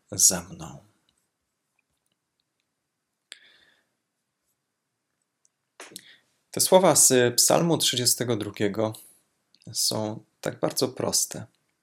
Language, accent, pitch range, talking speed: Polish, native, 105-125 Hz, 55 wpm